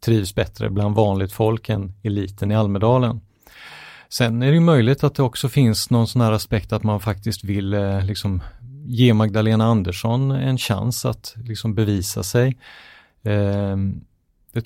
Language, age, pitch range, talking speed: English, 30-49, 100-120 Hz, 145 wpm